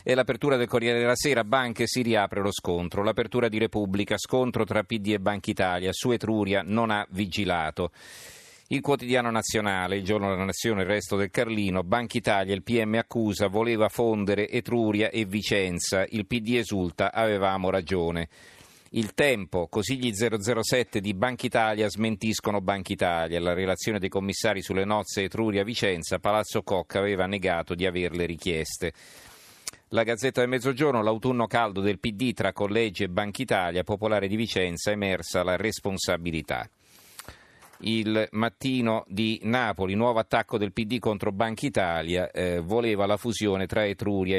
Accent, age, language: native, 40-59, Italian